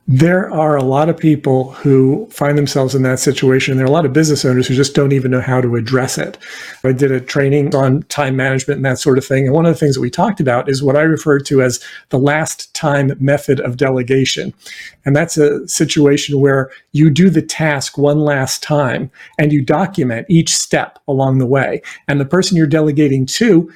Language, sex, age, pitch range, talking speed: English, male, 40-59, 135-160 Hz, 220 wpm